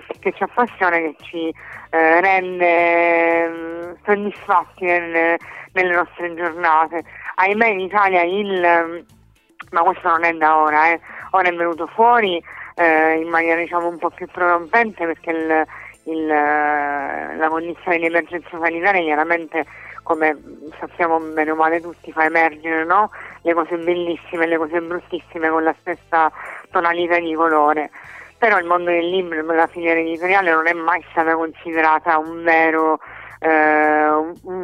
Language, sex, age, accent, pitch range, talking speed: Italian, female, 30-49, native, 155-175 Hz, 140 wpm